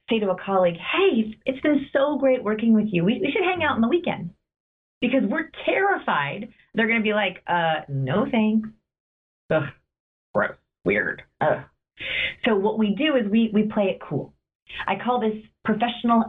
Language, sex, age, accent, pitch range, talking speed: English, female, 30-49, American, 165-230 Hz, 180 wpm